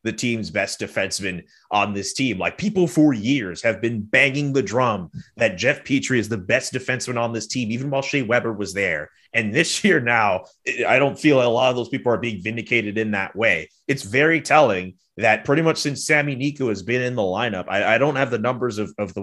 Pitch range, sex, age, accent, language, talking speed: 110-140 Hz, male, 30-49, American, English, 230 wpm